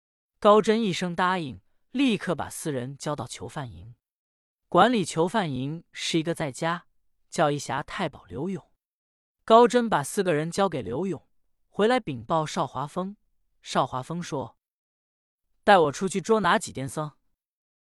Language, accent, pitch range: Chinese, native, 130-195 Hz